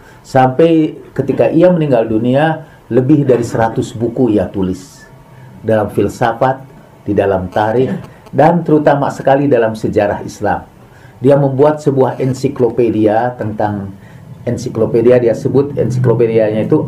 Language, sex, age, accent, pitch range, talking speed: Indonesian, male, 40-59, native, 110-135 Hz, 115 wpm